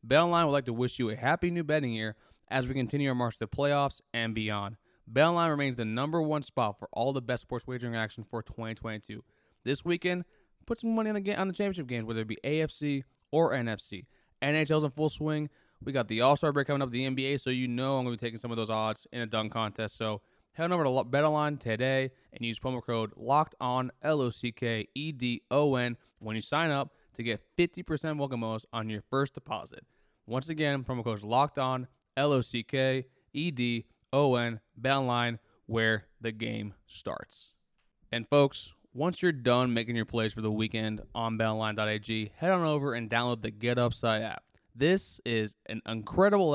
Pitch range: 115-145 Hz